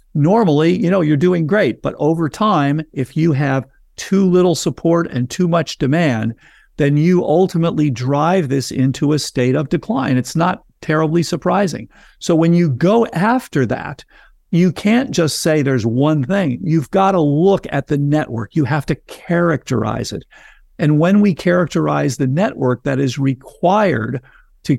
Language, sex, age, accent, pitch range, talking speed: English, male, 50-69, American, 130-170 Hz, 165 wpm